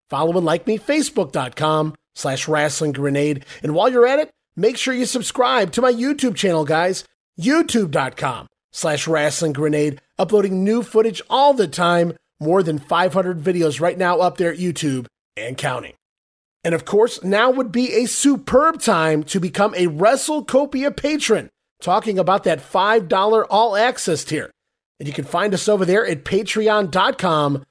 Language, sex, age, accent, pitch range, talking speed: English, male, 30-49, American, 165-225 Hz, 160 wpm